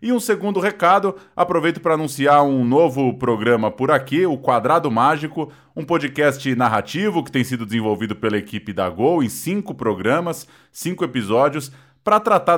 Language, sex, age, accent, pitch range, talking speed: Portuguese, male, 20-39, Brazilian, 110-150 Hz, 155 wpm